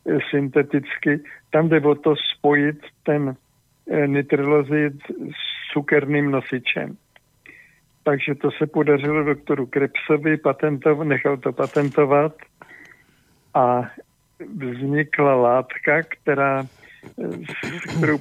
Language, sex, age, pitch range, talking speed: Slovak, male, 60-79, 140-150 Hz, 85 wpm